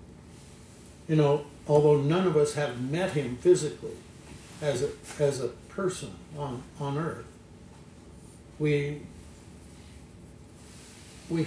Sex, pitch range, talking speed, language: male, 115-160 Hz, 105 wpm, English